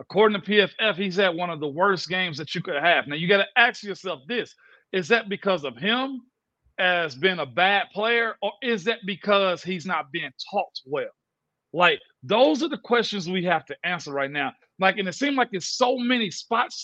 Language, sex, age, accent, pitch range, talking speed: English, male, 40-59, American, 190-250 Hz, 215 wpm